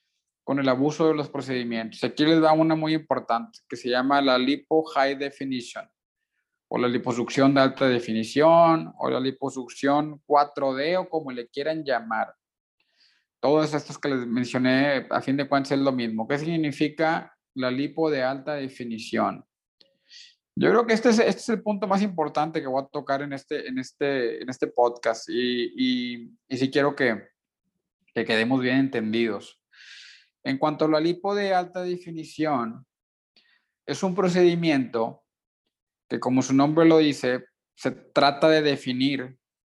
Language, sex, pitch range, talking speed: Spanish, male, 125-160 Hz, 160 wpm